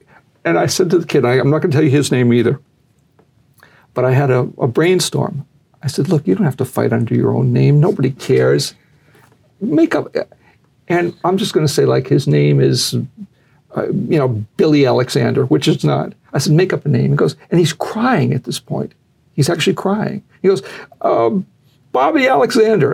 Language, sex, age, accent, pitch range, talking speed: English, male, 60-79, American, 130-180 Hz, 195 wpm